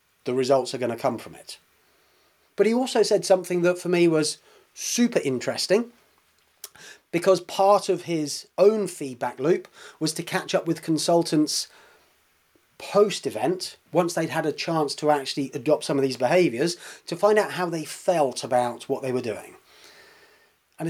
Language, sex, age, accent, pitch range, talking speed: English, male, 30-49, British, 145-195 Hz, 165 wpm